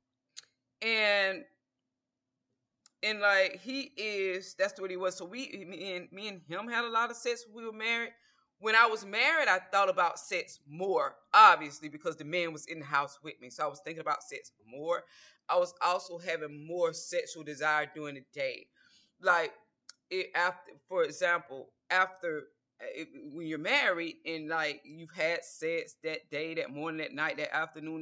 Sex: female